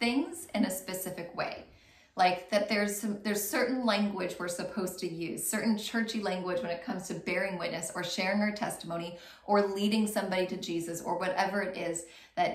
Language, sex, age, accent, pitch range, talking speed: English, female, 20-39, American, 190-250 Hz, 185 wpm